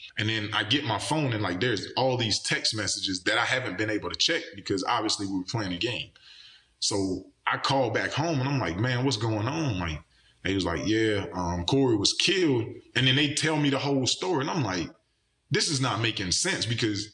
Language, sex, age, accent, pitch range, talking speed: English, male, 20-39, American, 105-145 Hz, 230 wpm